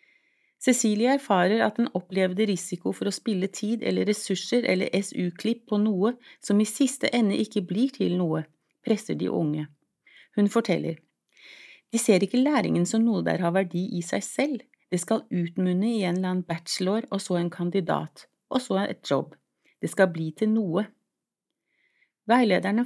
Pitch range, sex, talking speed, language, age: 185-240 Hz, female, 165 wpm, Danish, 30-49